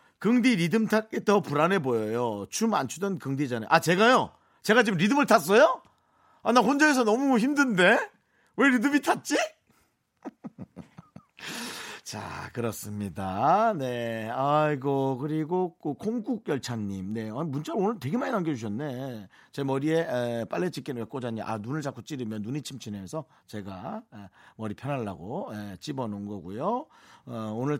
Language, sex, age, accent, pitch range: Korean, male, 40-59, native, 115-180 Hz